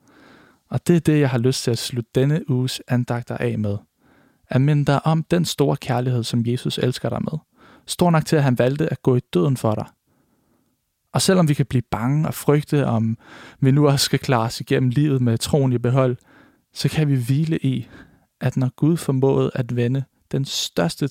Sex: male